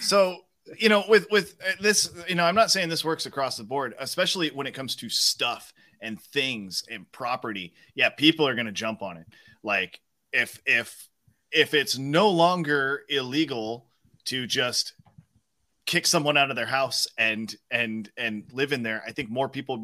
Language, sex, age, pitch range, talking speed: English, male, 30-49, 110-145 Hz, 185 wpm